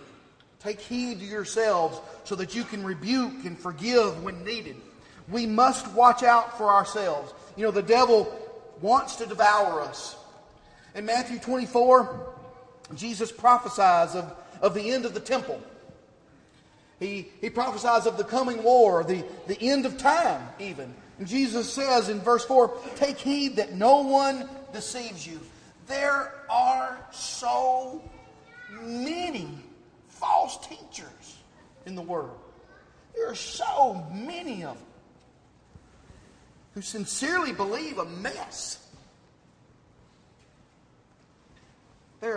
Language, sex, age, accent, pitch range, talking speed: English, male, 40-59, American, 205-275 Hz, 120 wpm